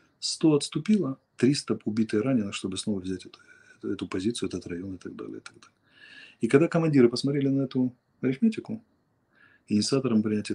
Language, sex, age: Russian, male, 30-49